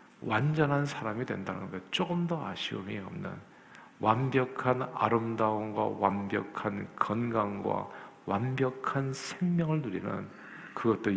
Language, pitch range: Korean, 115-155 Hz